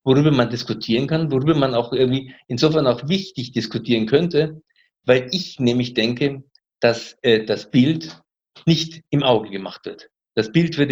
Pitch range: 125-155 Hz